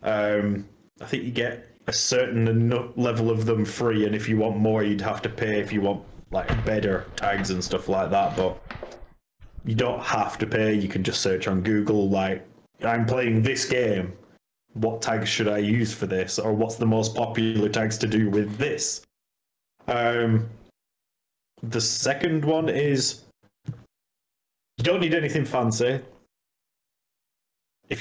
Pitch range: 110-130 Hz